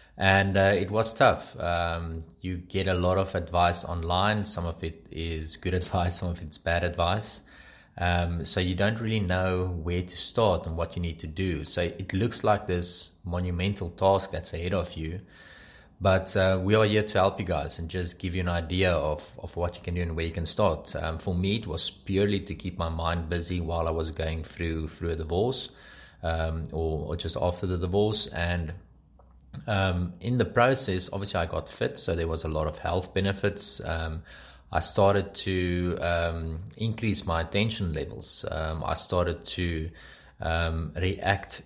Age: 20-39